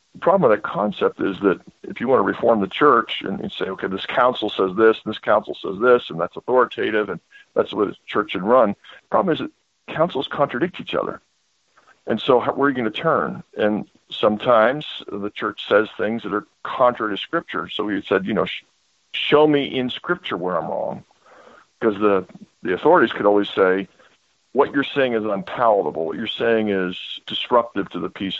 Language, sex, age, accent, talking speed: English, male, 50-69, American, 205 wpm